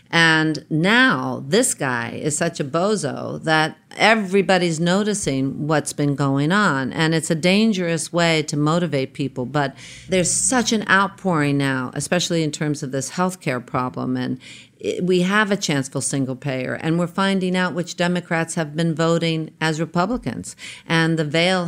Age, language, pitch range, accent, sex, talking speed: 50-69, English, 145-180 Hz, American, female, 160 wpm